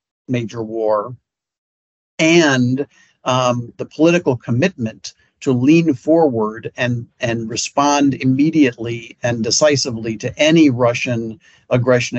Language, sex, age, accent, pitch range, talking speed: English, male, 50-69, American, 115-135 Hz, 100 wpm